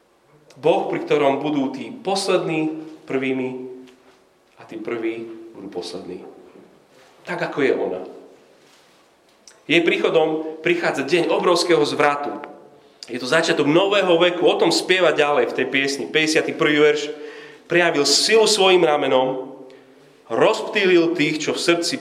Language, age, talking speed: Slovak, 40-59, 125 wpm